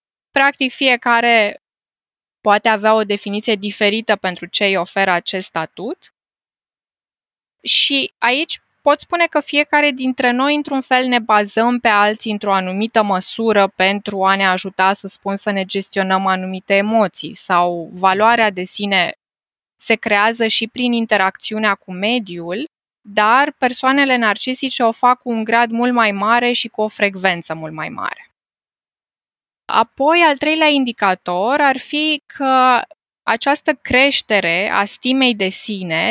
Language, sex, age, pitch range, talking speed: Romanian, female, 20-39, 200-260 Hz, 140 wpm